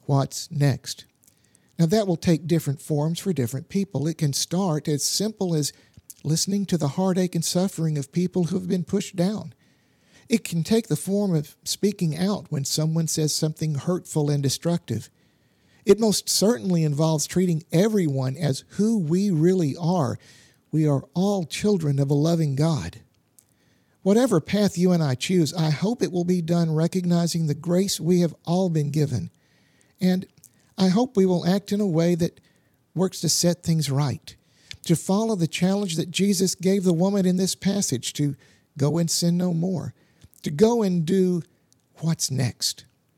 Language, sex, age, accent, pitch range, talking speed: English, male, 50-69, American, 145-190 Hz, 170 wpm